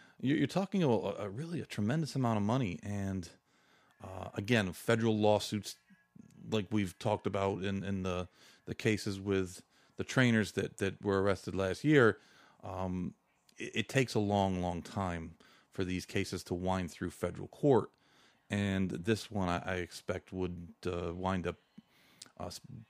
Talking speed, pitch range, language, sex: 160 wpm, 95-115 Hz, English, male